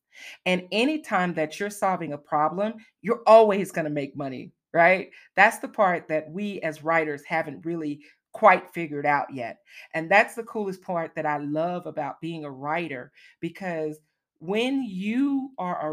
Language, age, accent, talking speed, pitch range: English, 40-59, American, 165 wpm, 155-205 Hz